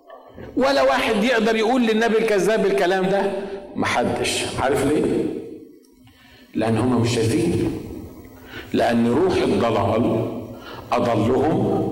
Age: 50-69